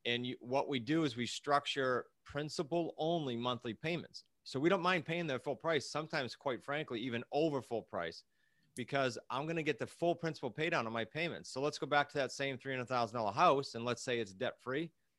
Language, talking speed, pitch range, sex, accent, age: English, 215 wpm, 120-155 Hz, male, American, 30-49